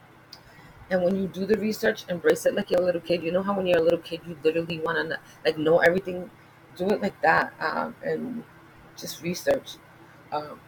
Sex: female